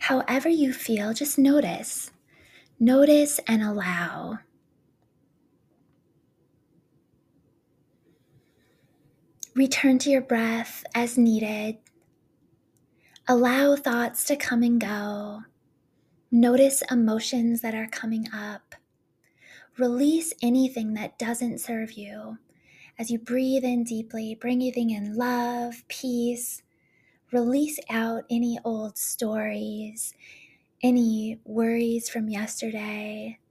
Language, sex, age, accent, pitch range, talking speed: English, female, 20-39, American, 215-245 Hz, 90 wpm